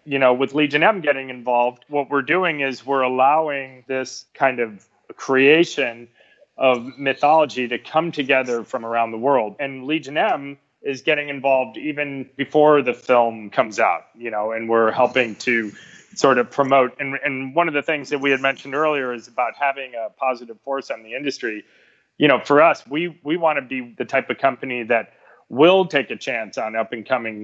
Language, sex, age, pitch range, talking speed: English, male, 30-49, 115-140 Hz, 190 wpm